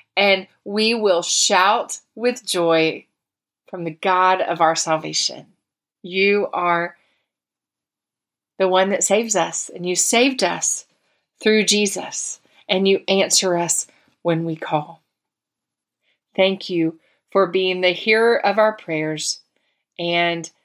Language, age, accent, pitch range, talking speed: English, 30-49, American, 170-200 Hz, 120 wpm